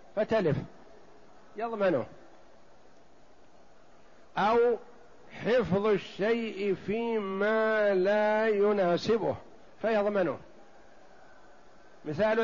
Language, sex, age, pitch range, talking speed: Arabic, male, 60-79, 165-205 Hz, 50 wpm